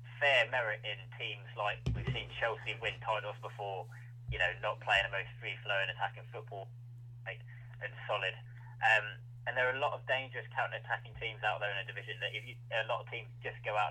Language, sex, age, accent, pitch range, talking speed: English, male, 20-39, British, 115-125 Hz, 205 wpm